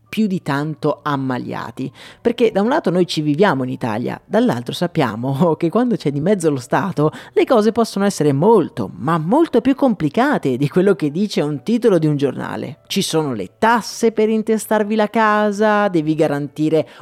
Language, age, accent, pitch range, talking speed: Italian, 30-49, native, 145-220 Hz, 175 wpm